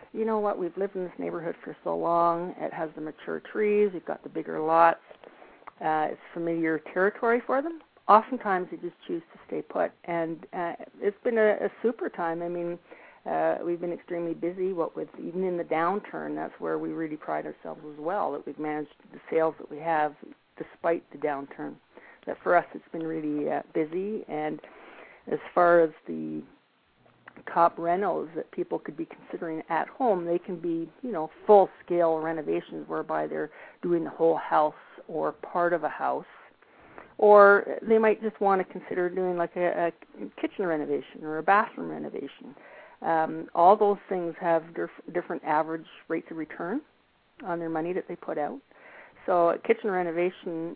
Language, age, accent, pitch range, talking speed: English, 50-69, American, 160-195 Hz, 180 wpm